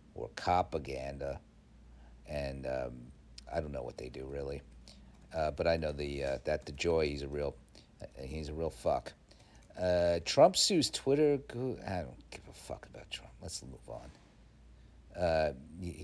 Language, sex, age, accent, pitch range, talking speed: English, male, 50-69, American, 70-105 Hz, 155 wpm